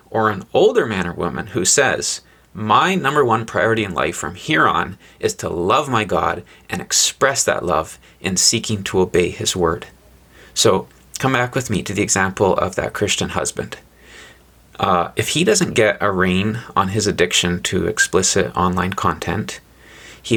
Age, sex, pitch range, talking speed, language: 30-49, male, 95-125 Hz, 175 wpm, English